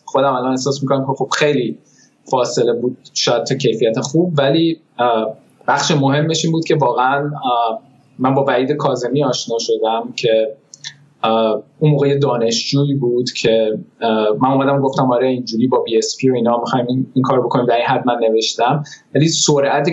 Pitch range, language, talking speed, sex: 115-145 Hz, Persian, 150 wpm, male